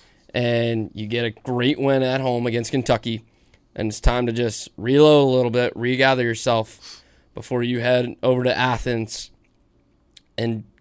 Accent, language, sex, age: American, English, male, 20-39